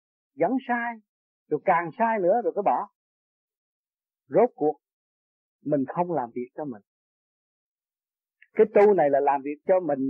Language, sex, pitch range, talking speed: Vietnamese, male, 155-235 Hz, 150 wpm